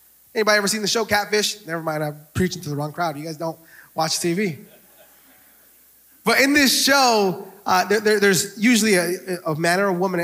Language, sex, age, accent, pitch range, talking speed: English, male, 20-39, American, 170-225 Hz, 200 wpm